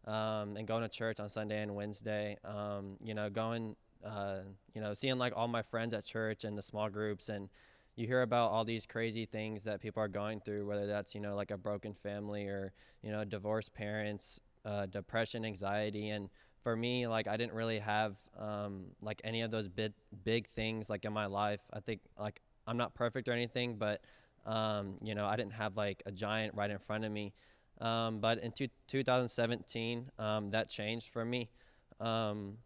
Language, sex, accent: English, male, American